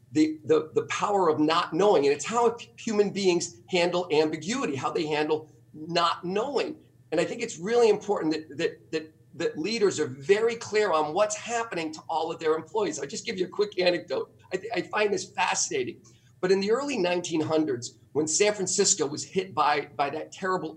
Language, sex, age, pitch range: English, male, 40-59, 130-200 Hz